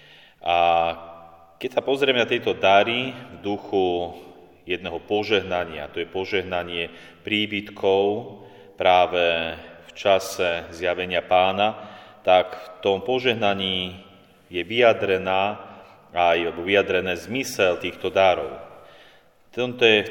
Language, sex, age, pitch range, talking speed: Slovak, male, 30-49, 90-105 Hz, 90 wpm